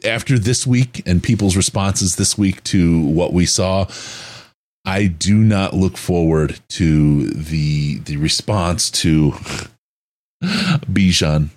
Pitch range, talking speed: 80-120 Hz, 120 wpm